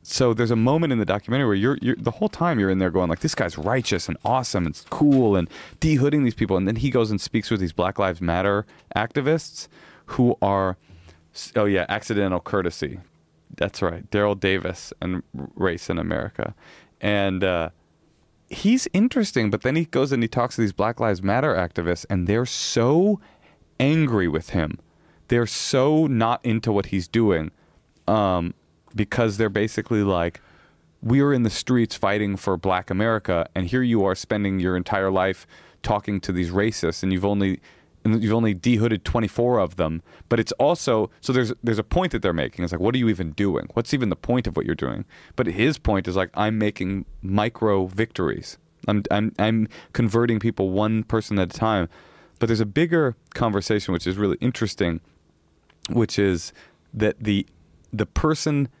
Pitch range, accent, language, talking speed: 95-120 Hz, American, English, 185 wpm